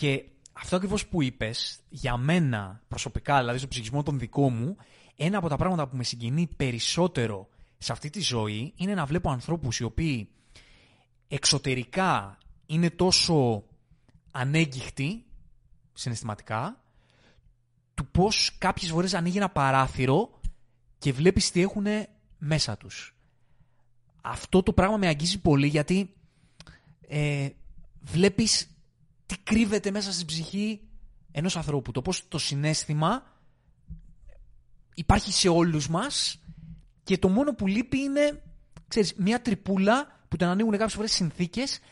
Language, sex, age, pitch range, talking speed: Greek, male, 30-49, 125-185 Hz, 130 wpm